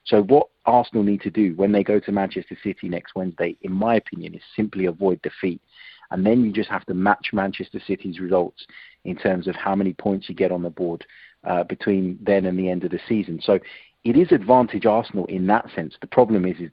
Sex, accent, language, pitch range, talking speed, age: male, British, English, 90-105 Hz, 225 wpm, 30-49